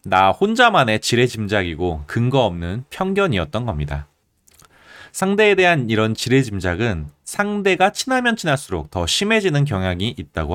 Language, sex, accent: Korean, male, native